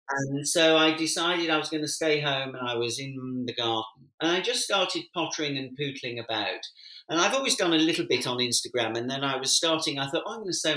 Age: 50-69